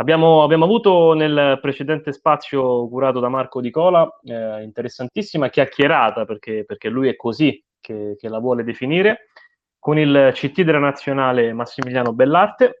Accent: native